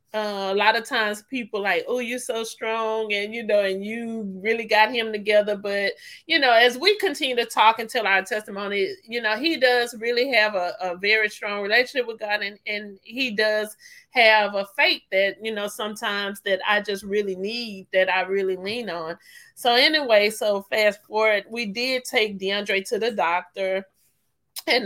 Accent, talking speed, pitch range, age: American, 190 wpm, 195-235 Hz, 30-49